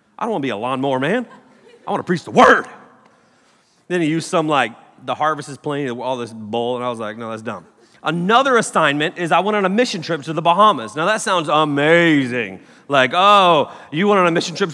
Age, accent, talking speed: 30-49, American, 230 wpm